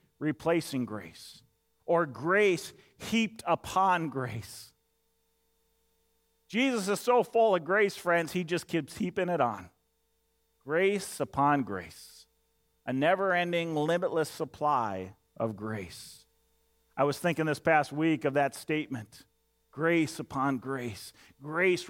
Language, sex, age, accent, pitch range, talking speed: English, male, 40-59, American, 135-200 Hz, 115 wpm